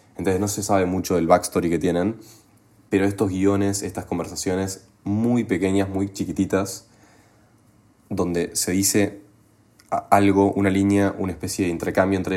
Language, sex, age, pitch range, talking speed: Spanish, male, 20-39, 90-100 Hz, 140 wpm